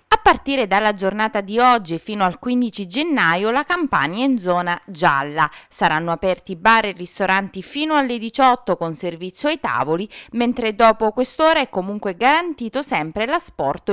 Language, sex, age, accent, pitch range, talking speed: Italian, female, 20-39, native, 195-265 Hz, 155 wpm